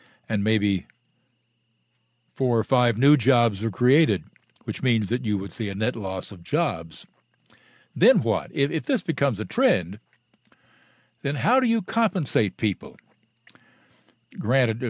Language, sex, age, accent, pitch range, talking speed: English, male, 60-79, American, 105-135 Hz, 140 wpm